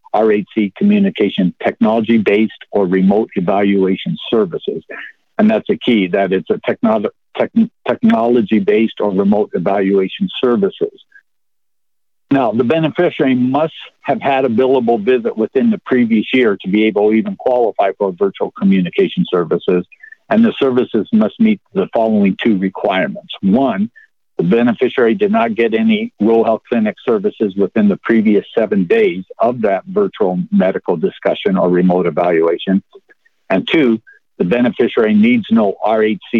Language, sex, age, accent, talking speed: English, male, 60-79, American, 135 wpm